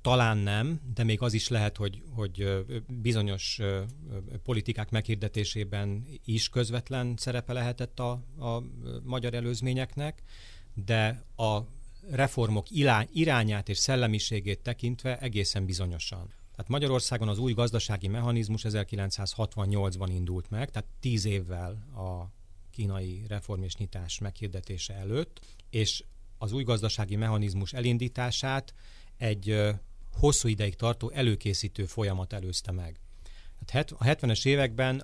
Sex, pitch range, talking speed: male, 100-120 Hz, 110 wpm